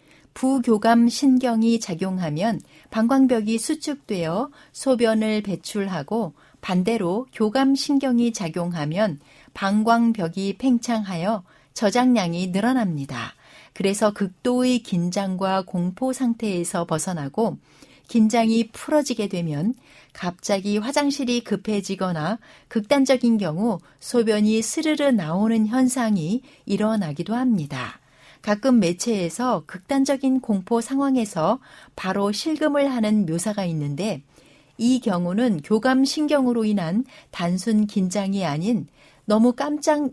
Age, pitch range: 60-79, 180-250 Hz